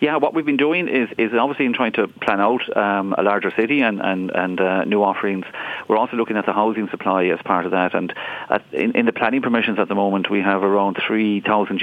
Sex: male